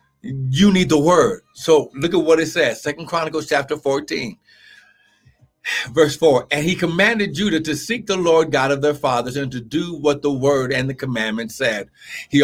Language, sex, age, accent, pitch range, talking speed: English, male, 60-79, American, 140-170 Hz, 190 wpm